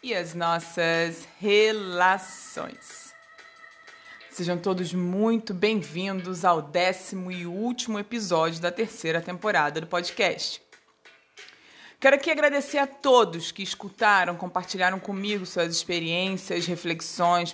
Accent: Brazilian